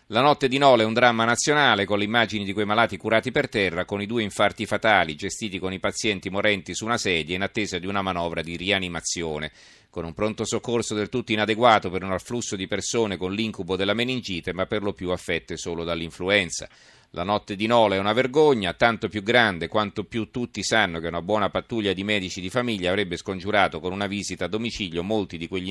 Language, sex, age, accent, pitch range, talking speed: Italian, male, 40-59, native, 90-110 Hz, 215 wpm